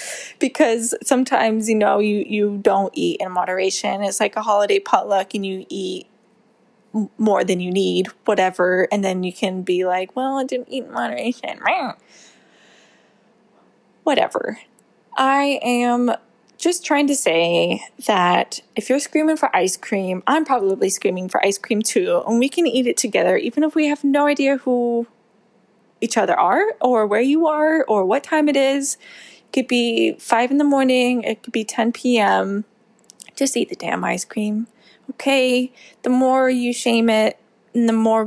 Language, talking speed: English, 170 wpm